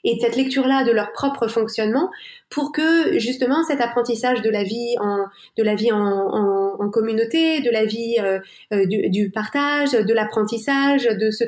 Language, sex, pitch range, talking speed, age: French, female, 220-275 Hz, 180 wpm, 20-39